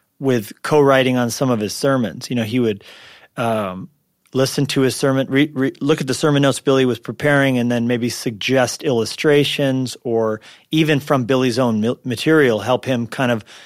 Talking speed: 180 wpm